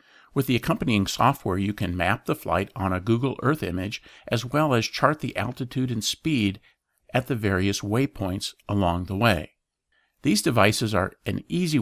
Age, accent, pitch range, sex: 50-69, American, 95-125 Hz, male